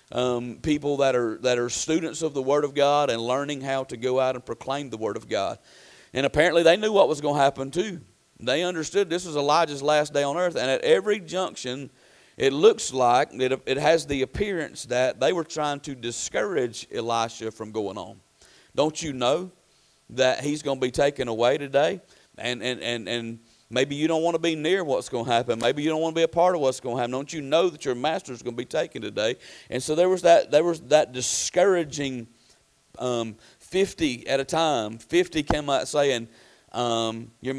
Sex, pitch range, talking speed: male, 120-155 Hz, 215 wpm